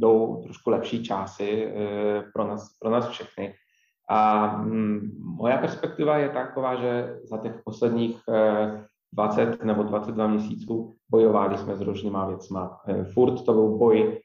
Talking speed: 130 wpm